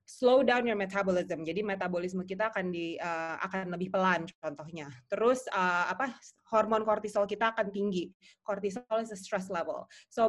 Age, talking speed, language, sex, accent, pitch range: 20-39, 165 wpm, Indonesian, female, native, 190-245 Hz